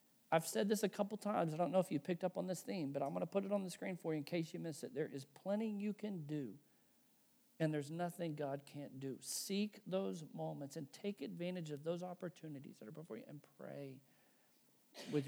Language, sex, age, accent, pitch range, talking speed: English, male, 50-69, American, 145-180 Hz, 235 wpm